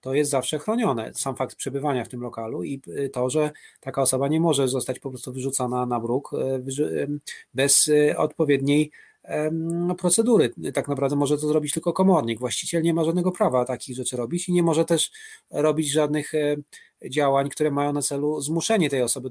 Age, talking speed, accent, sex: 30-49, 170 wpm, native, male